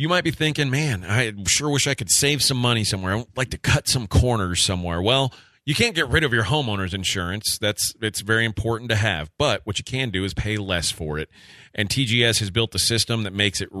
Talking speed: 245 wpm